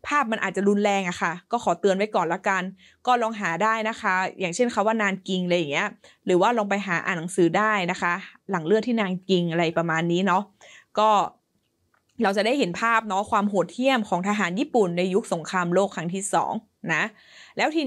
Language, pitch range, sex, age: Thai, 185-225 Hz, female, 20-39